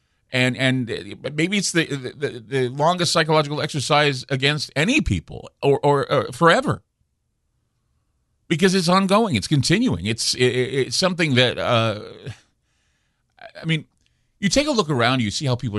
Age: 50-69